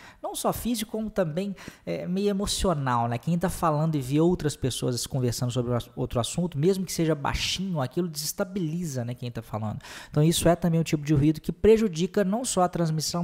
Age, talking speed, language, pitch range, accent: 20-39, 200 wpm, Portuguese, 135-185 Hz, Brazilian